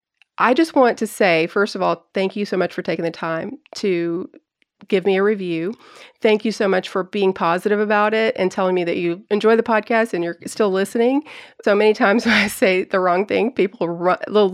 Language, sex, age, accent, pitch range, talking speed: English, female, 30-49, American, 175-215 Hz, 220 wpm